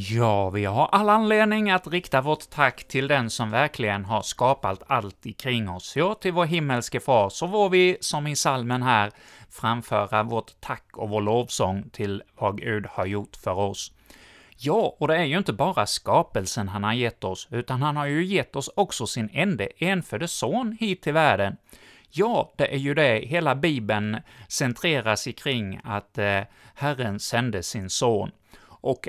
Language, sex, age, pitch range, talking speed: Swedish, male, 30-49, 110-175 Hz, 175 wpm